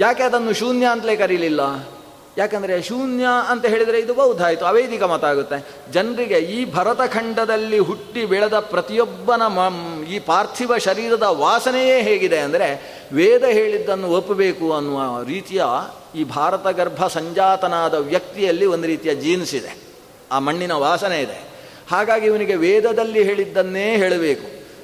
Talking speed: 120 wpm